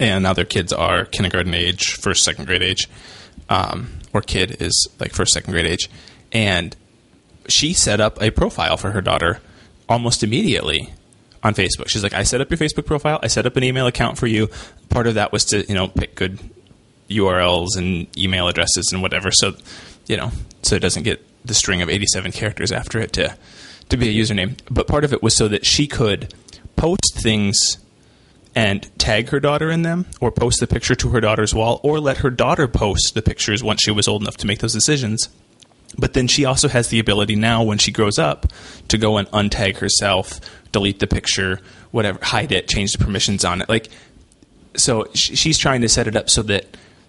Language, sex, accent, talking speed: English, male, American, 210 wpm